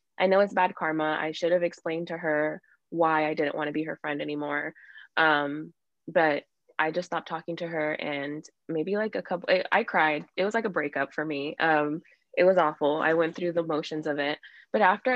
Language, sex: English, female